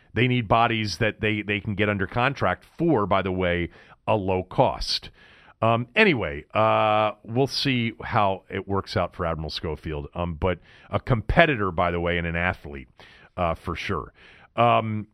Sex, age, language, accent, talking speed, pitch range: male, 40-59, English, American, 170 wpm, 95-125 Hz